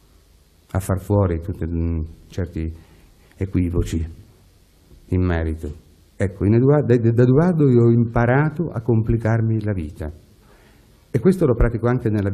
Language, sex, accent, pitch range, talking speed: Italian, male, native, 85-115 Hz, 120 wpm